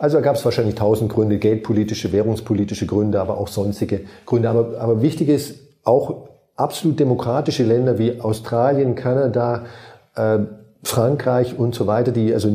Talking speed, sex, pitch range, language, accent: 150 wpm, male, 110-125 Hz, German, German